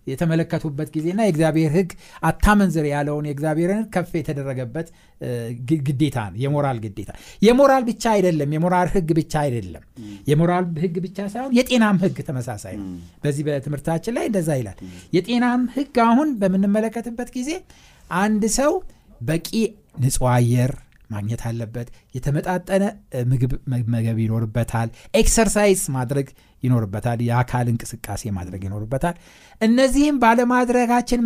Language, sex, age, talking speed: Amharic, male, 60-79, 100 wpm